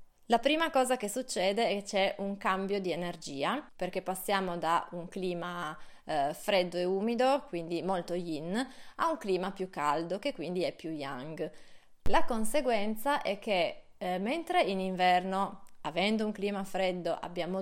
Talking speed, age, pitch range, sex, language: 160 wpm, 20-39, 175-215 Hz, female, Italian